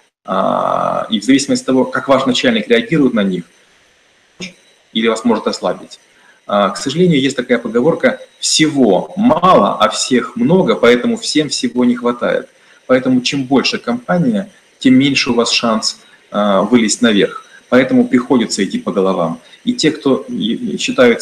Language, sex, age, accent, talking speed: Russian, male, 30-49, native, 140 wpm